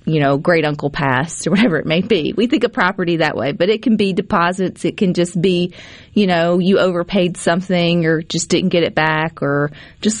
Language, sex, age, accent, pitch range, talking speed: English, female, 40-59, American, 155-205 Hz, 225 wpm